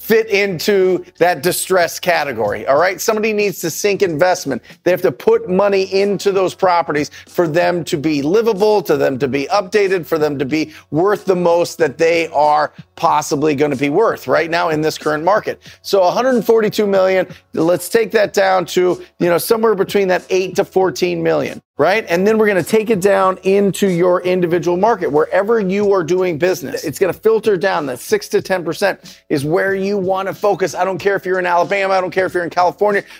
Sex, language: male, English